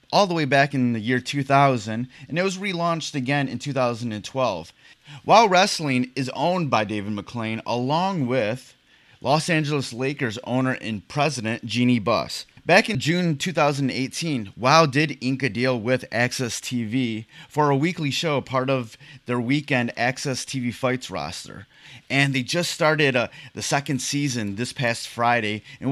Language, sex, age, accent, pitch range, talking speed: English, male, 30-49, American, 120-145 Hz, 155 wpm